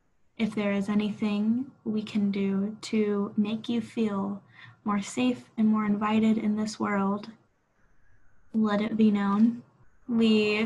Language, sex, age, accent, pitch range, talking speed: English, female, 10-29, American, 205-235 Hz, 135 wpm